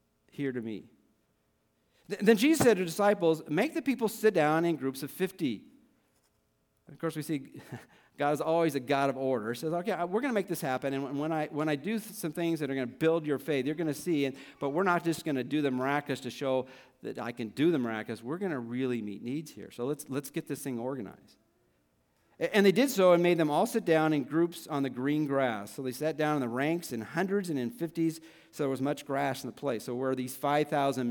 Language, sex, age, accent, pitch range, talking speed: English, male, 50-69, American, 120-155 Hz, 250 wpm